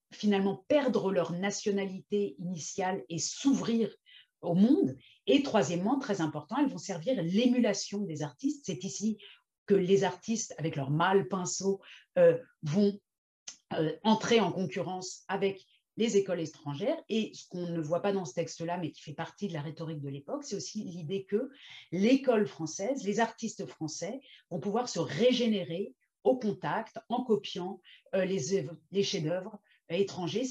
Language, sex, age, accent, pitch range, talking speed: French, female, 40-59, French, 170-225 Hz, 155 wpm